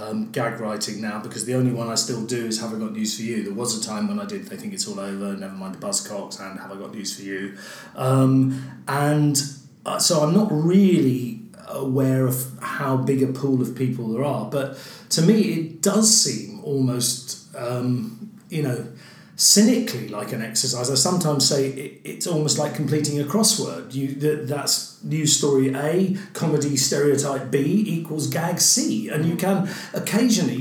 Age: 40-59